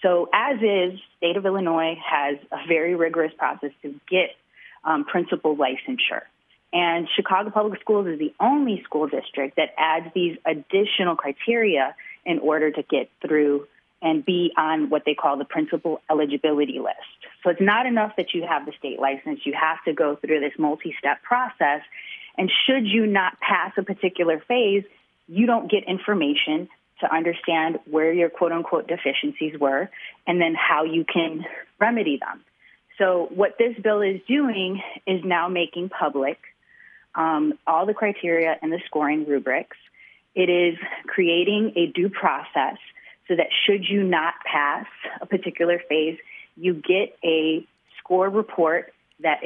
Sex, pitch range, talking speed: female, 155-195 Hz, 155 wpm